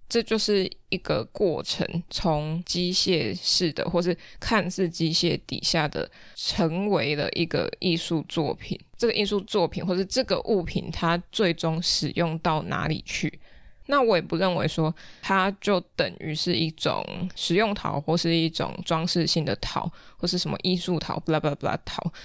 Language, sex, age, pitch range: Chinese, female, 20-39, 160-190 Hz